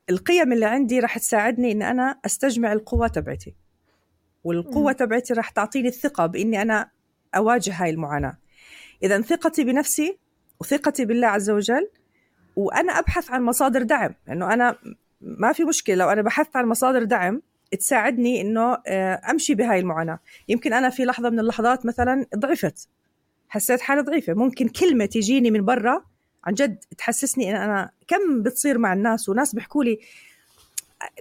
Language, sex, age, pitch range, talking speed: Arabic, female, 40-59, 205-270 Hz, 150 wpm